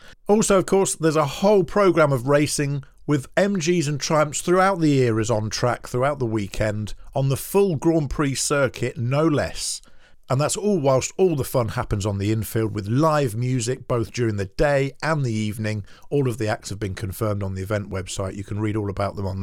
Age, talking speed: 50-69, 215 wpm